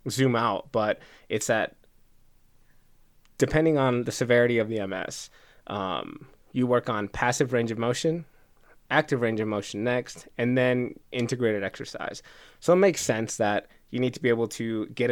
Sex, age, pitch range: male, 20-39, 110-130 Hz